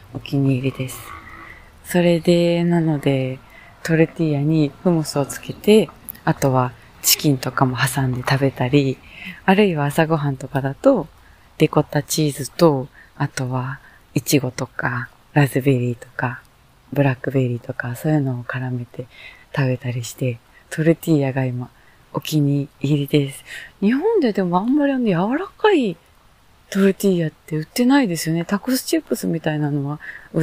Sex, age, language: female, 20-39, Japanese